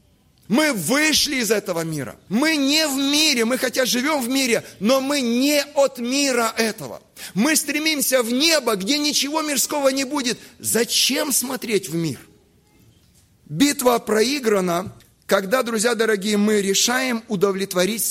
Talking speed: 135 wpm